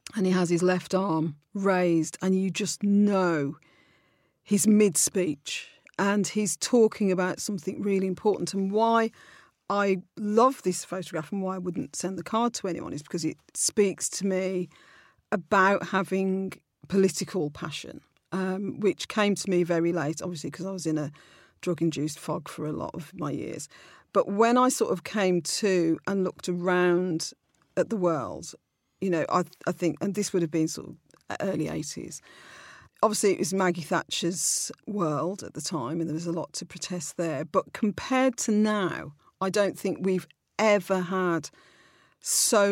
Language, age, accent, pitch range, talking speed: English, 40-59, British, 170-200 Hz, 170 wpm